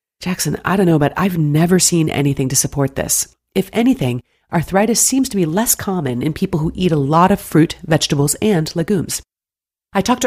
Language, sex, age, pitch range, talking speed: English, female, 40-59, 150-205 Hz, 195 wpm